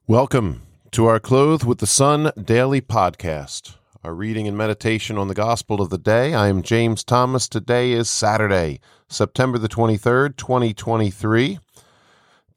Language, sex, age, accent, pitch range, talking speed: English, male, 40-59, American, 95-115 Hz, 145 wpm